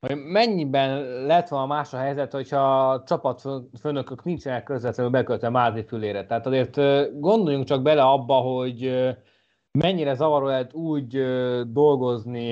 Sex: male